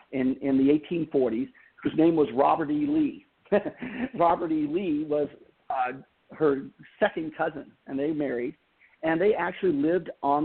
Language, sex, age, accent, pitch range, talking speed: English, male, 50-69, American, 135-165 Hz, 150 wpm